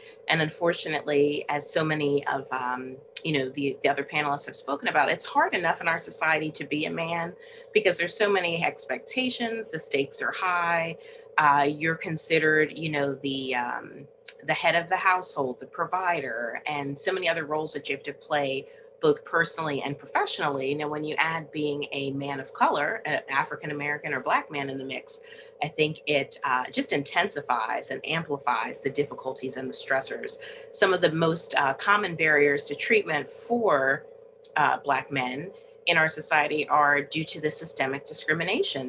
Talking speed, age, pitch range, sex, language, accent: 175 wpm, 30-49, 145-185 Hz, female, English, American